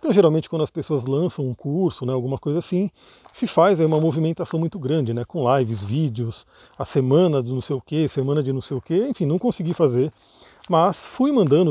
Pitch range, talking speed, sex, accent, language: 140-185 Hz, 220 wpm, male, Brazilian, Portuguese